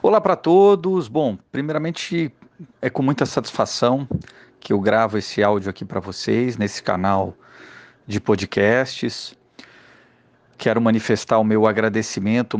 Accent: Brazilian